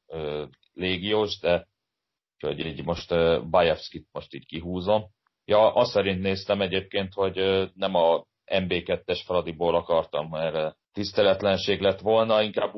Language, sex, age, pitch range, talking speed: Hungarian, male, 30-49, 85-100 Hz, 115 wpm